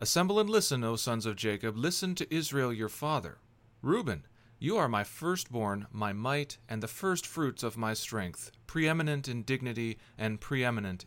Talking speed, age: 165 wpm, 40-59